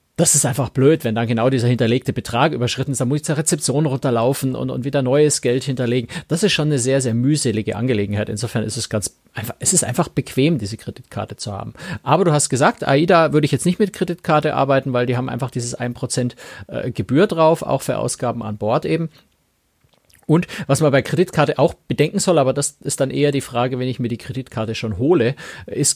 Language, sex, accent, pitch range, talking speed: German, male, German, 120-150 Hz, 215 wpm